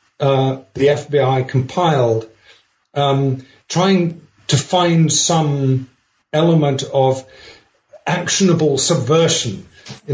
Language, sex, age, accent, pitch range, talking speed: English, male, 50-69, British, 130-165 Hz, 85 wpm